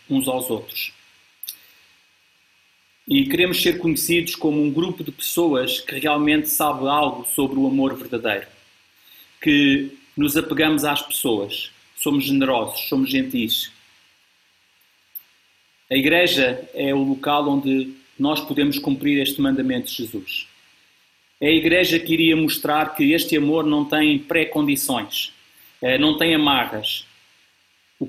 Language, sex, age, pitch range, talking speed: Portuguese, male, 40-59, 135-160 Hz, 125 wpm